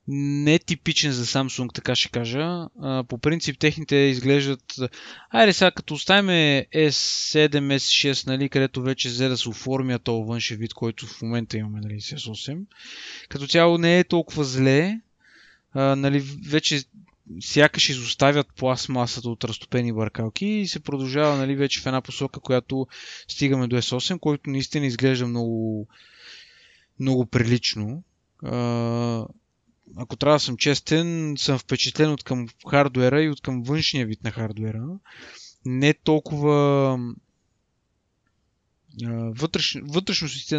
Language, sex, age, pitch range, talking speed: Bulgarian, male, 20-39, 125-155 Hz, 125 wpm